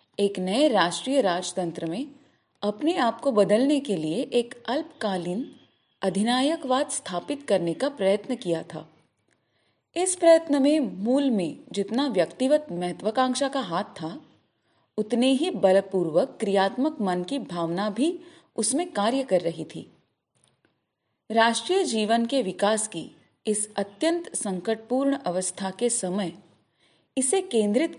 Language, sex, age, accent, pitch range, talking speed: Hindi, female, 30-49, native, 185-275 Hz, 120 wpm